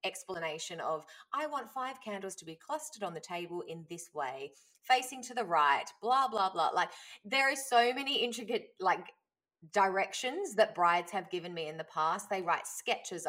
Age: 20-39